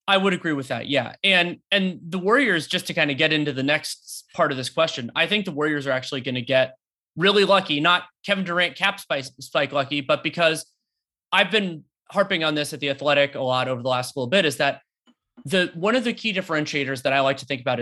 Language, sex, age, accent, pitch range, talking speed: English, male, 30-49, American, 140-180 Hz, 235 wpm